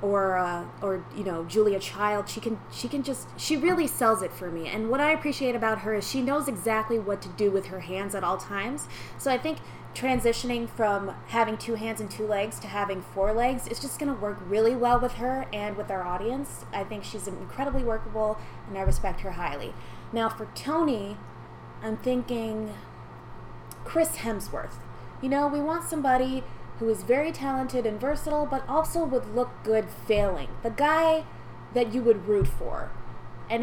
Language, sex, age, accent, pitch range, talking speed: English, female, 20-39, American, 205-260 Hz, 190 wpm